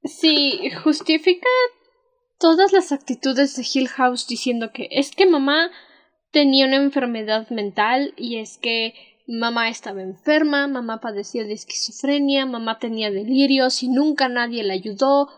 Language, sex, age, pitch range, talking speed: Spanish, female, 10-29, 240-295 Hz, 140 wpm